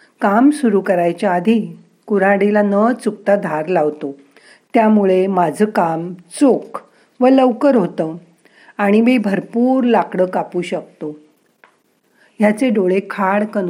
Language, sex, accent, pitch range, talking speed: Marathi, female, native, 175-225 Hz, 120 wpm